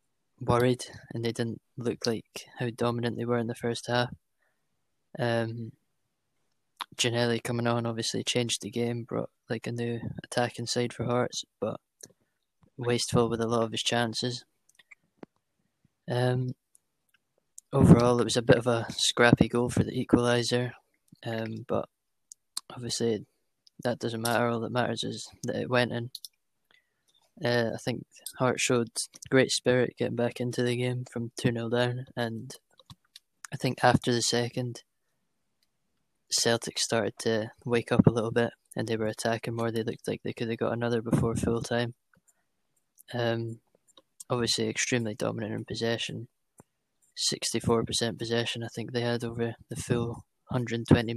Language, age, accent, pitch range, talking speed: English, 20-39, British, 115-125 Hz, 150 wpm